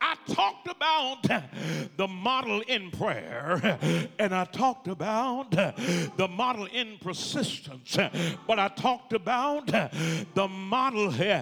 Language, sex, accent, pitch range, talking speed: English, male, American, 190-265 Hz, 110 wpm